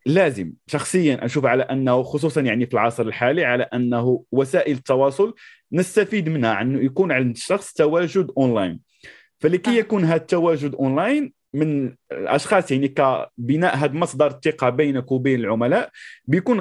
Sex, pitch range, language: male, 130-180 Hz, Arabic